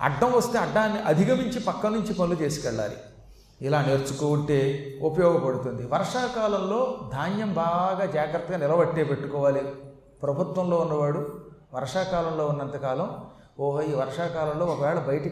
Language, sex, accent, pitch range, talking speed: Telugu, male, native, 145-195 Hz, 100 wpm